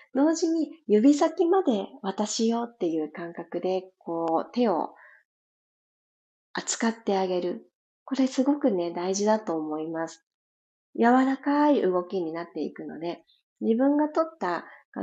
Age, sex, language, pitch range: 40-59, female, Japanese, 180-275 Hz